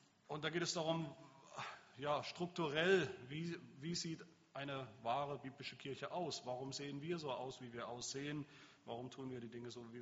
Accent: German